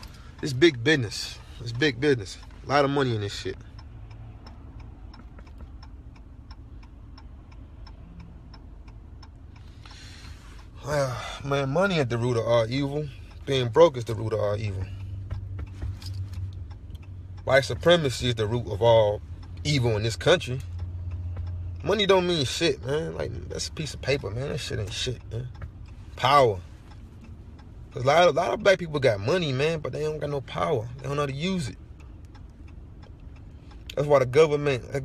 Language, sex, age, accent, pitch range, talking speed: English, male, 30-49, American, 90-130 Hz, 150 wpm